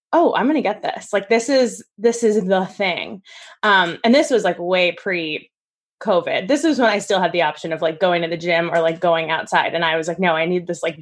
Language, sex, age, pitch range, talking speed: English, female, 20-39, 175-225 Hz, 260 wpm